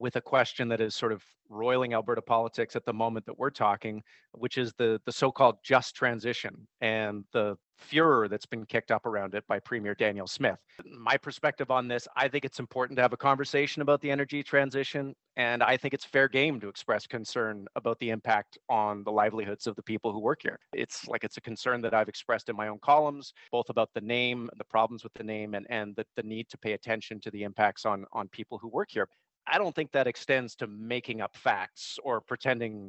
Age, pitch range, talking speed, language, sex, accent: 40-59, 110-125 Hz, 225 wpm, English, male, American